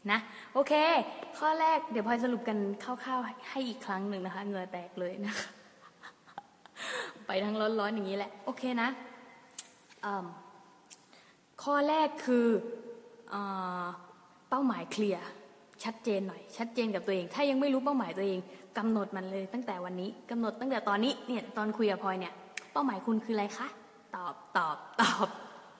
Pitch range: 200-255 Hz